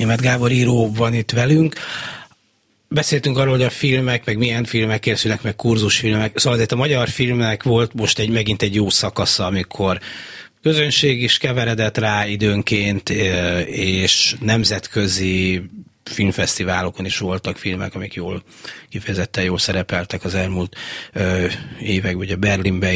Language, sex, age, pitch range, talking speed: Hungarian, male, 30-49, 100-115 Hz, 135 wpm